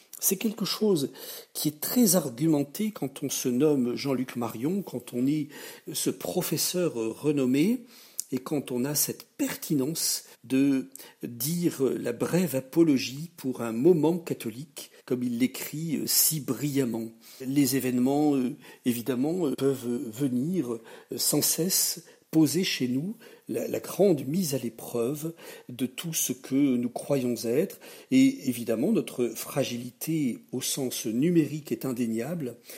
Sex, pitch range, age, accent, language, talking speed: male, 125-170 Hz, 50-69, French, French, 130 wpm